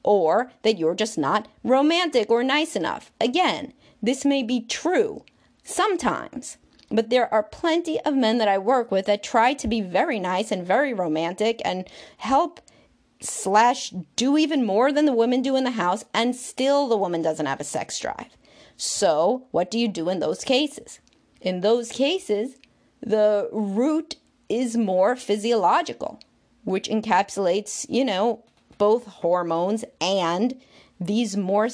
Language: English